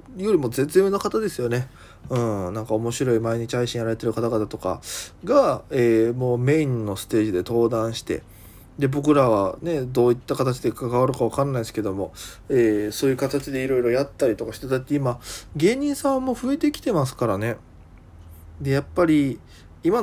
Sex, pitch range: male, 110-155 Hz